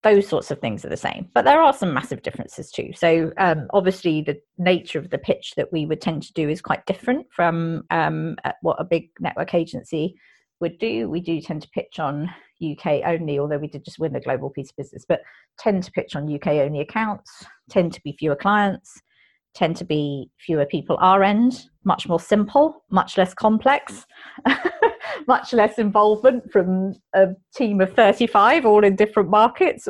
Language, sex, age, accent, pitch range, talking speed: English, female, 30-49, British, 155-210 Hz, 195 wpm